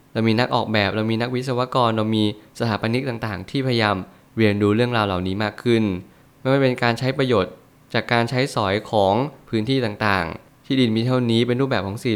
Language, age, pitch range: Thai, 20-39, 105-130 Hz